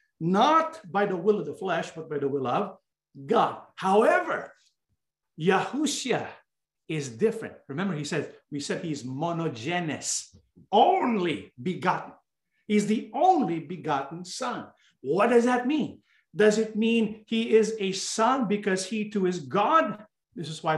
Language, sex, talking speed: English, male, 145 wpm